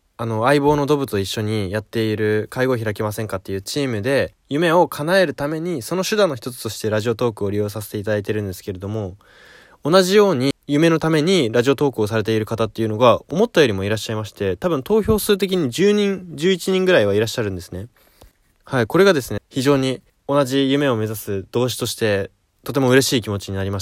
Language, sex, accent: Japanese, male, native